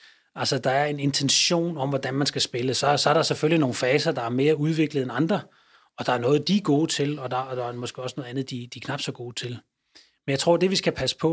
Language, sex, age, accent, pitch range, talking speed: Danish, male, 30-49, native, 130-150 Hz, 290 wpm